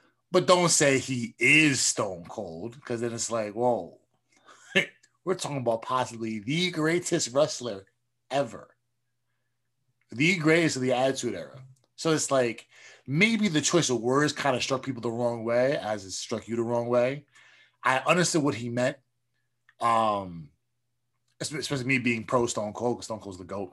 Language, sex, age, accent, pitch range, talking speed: English, male, 20-39, American, 115-140 Hz, 160 wpm